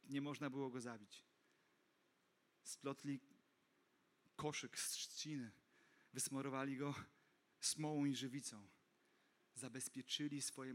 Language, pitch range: Polish, 115-135 Hz